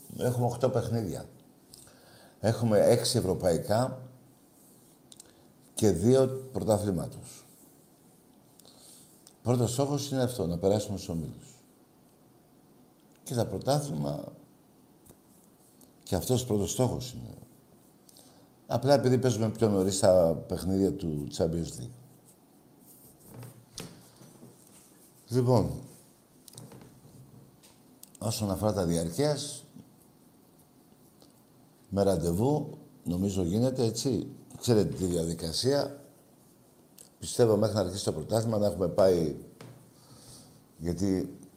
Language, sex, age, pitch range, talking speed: Greek, male, 60-79, 90-125 Hz, 80 wpm